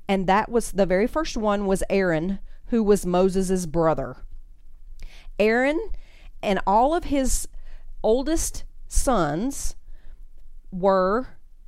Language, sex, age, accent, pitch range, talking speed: English, female, 40-59, American, 180-235 Hz, 110 wpm